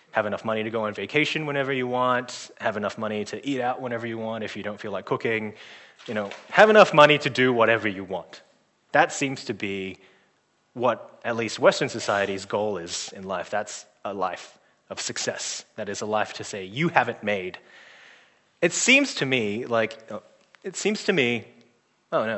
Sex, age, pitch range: male, 20-39, 105-135 Hz